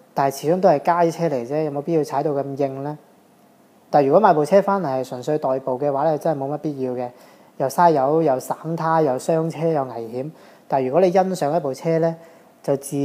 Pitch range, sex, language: 140-165 Hz, male, Chinese